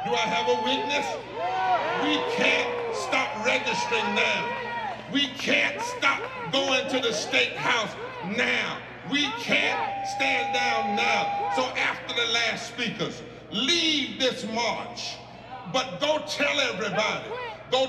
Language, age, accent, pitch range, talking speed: English, 50-69, American, 220-300 Hz, 125 wpm